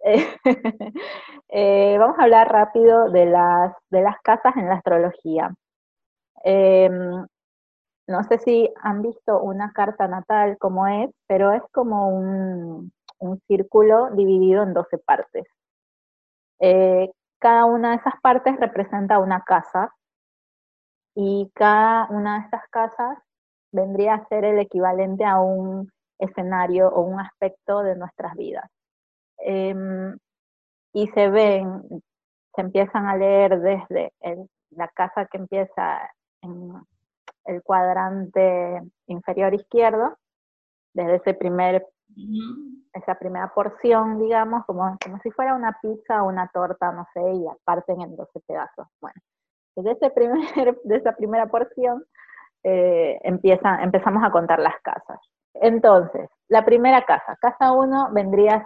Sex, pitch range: female, 185-225 Hz